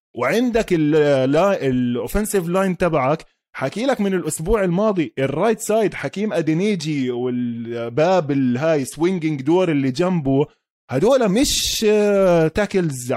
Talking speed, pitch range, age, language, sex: 100 wpm, 130-190 Hz, 20-39, Arabic, male